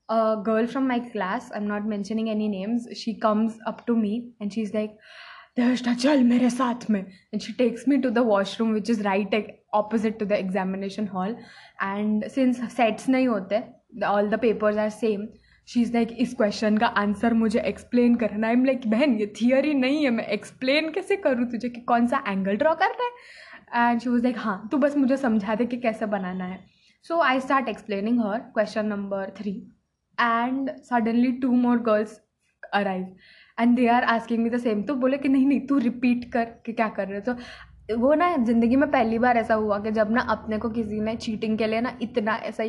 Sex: female